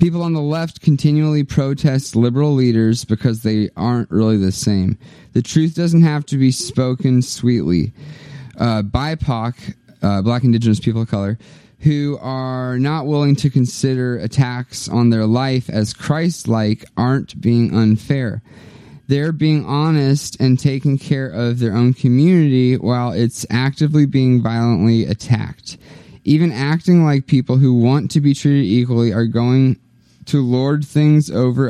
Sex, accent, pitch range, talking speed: male, American, 115-145 Hz, 145 wpm